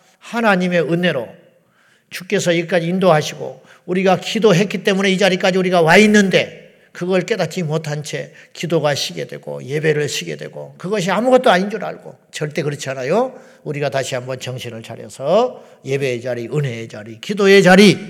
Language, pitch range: Korean, 145-200 Hz